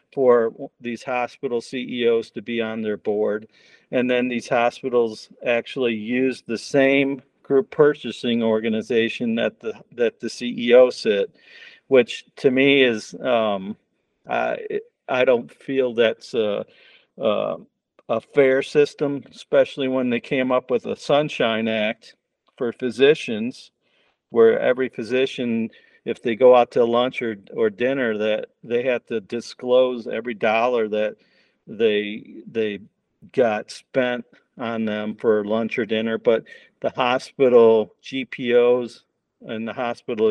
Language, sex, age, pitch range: English, male, 50-69, 115-140 Hz